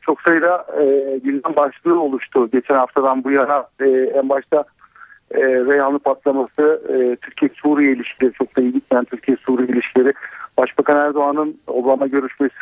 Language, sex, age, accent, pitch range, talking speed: Turkish, male, 50-69, native, 130-150 Hz, 140 wpm